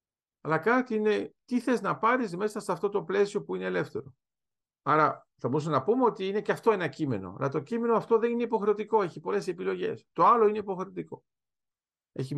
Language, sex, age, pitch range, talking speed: Greek, male, 50-69, 145-200 Hz, 200 wpm